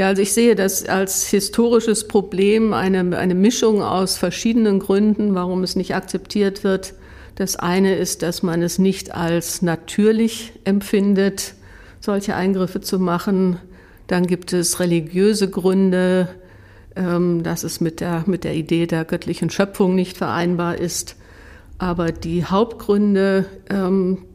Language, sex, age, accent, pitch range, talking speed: German, female, 50-69, German, 170-195 Hz, 135 wpm